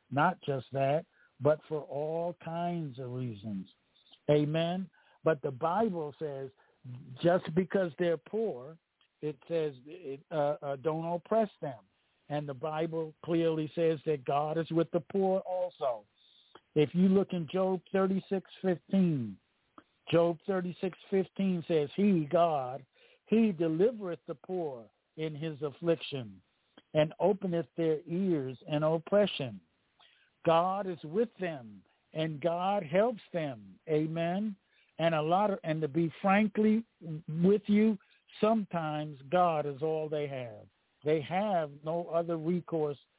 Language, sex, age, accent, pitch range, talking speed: English, male, 60-79, American, 145-175 Hz, 125 wpm